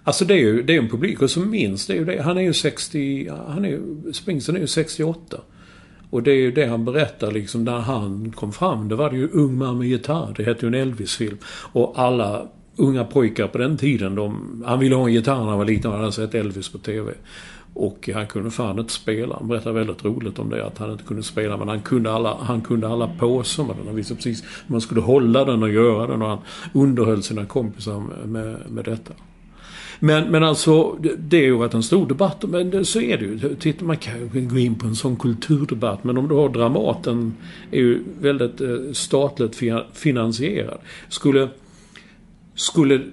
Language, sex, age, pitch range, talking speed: English, male, 50-69, 115-145 Hz, 205 wpm